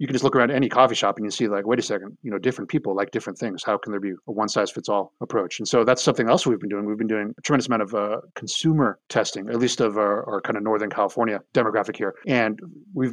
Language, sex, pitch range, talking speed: English, male, 105-130 Hz, 290 wpm